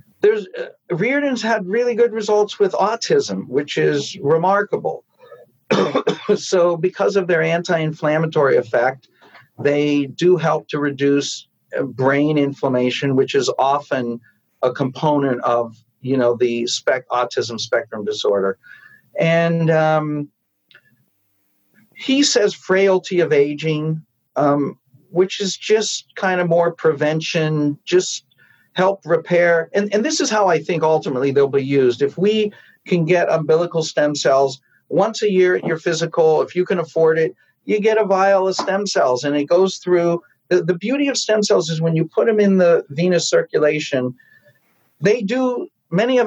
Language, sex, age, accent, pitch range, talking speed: English, male, 50-69, American, 145-195 Hz, 150 wpm